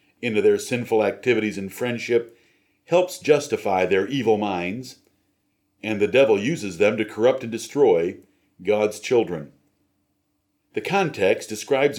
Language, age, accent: English, 50-69, American